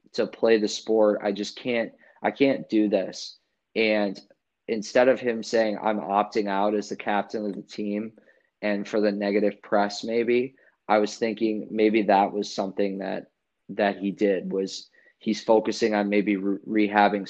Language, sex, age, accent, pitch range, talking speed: English, male, 20-39, American, 100-110 Hz, 165 wpm